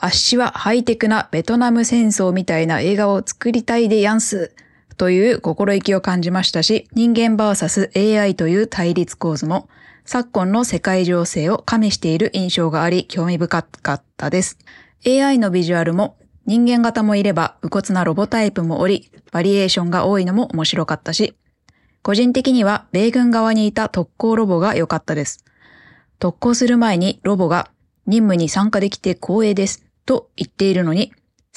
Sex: female